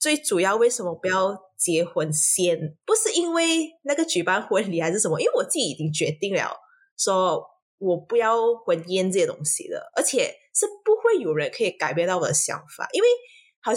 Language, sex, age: Chinese, female, 20-39